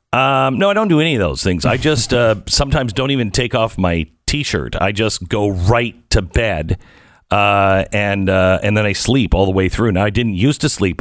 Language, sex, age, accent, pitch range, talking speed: English, male, 50-69, American, 100-135 Hz, 230 wpm